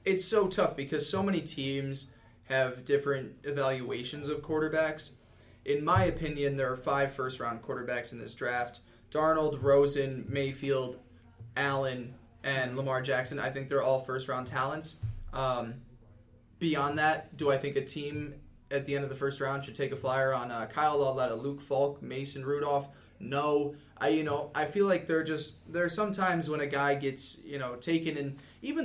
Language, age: English, 20-39